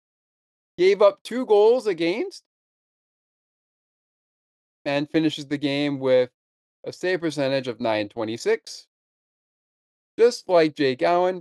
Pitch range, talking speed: 130-180 Hz, 100 wpm